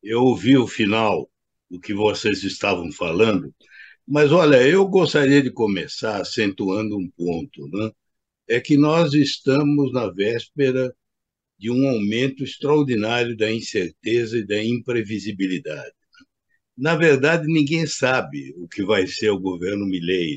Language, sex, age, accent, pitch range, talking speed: Portuguese, male, 60-79, Brazilian, 115-150 Hz, 135 wpm